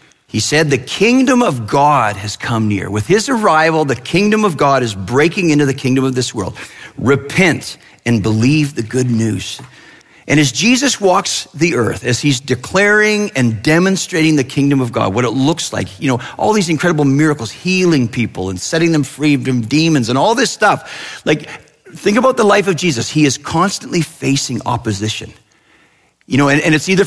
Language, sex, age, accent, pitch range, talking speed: English, male, 40-59, American, 125-190 Hz, 190 wpm